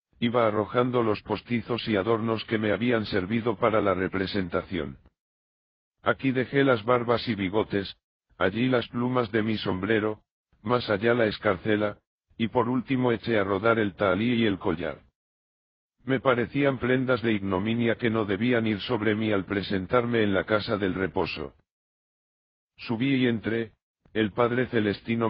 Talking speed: 150 wpm